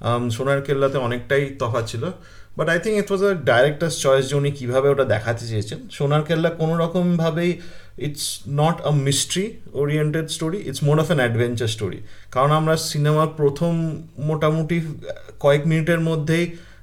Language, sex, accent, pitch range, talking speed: Bengali, male, native, 125-165 Hz, 145 wpm